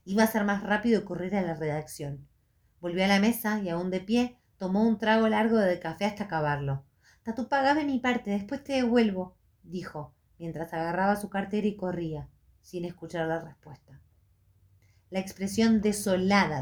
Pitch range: 150-200 Hz